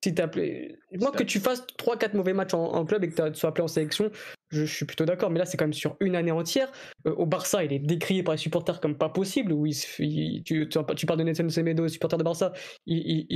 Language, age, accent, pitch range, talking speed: French, 20-39, French, 155-185 Hz, 275 wpm